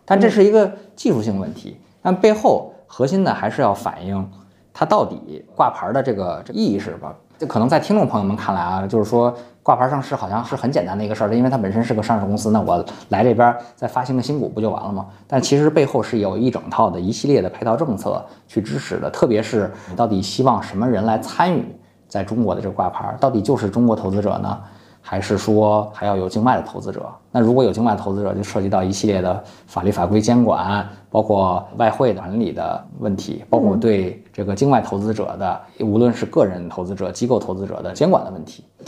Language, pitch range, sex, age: Chinese, 100-125 Hz, male, 20-39